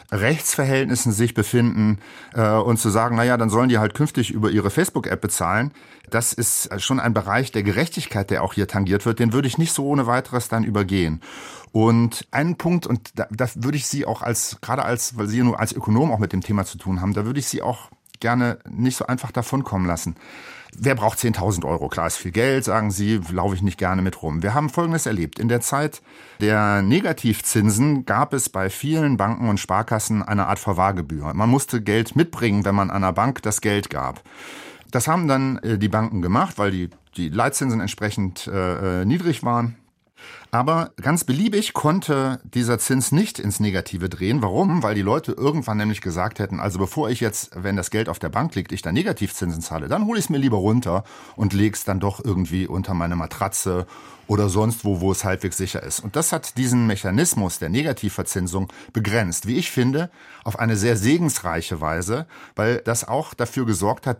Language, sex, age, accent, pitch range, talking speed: German, male, 40-59, German, 100-130 Hz, 200 wpm